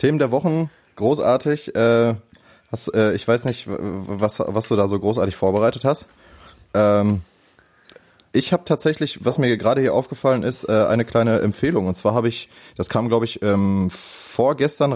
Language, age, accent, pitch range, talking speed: German, 20-39, German, 105-125 Hz, 170 wpm